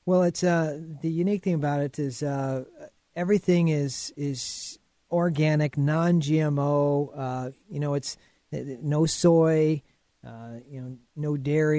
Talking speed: 130 wpm